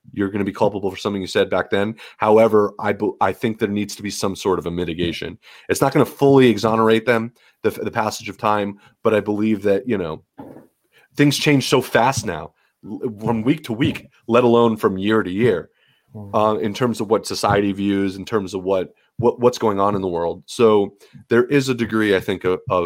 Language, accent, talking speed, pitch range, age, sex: English, American, 220 wpm, 100-115 Hz, 30-49, male